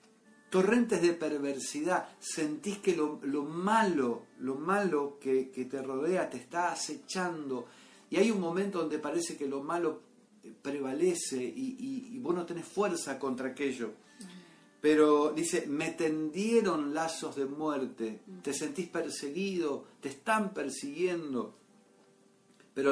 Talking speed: 130 wpm